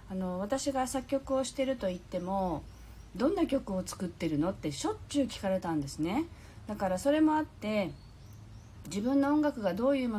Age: 40-59